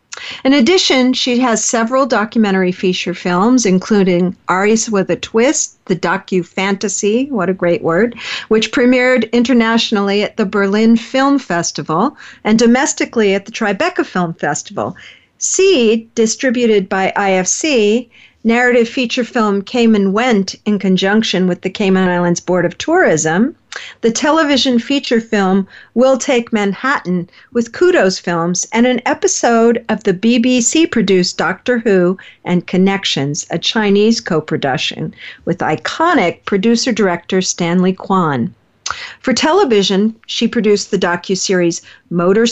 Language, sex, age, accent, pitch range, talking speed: English, female, 50-69, American, 190-245 Hz, 125 wpm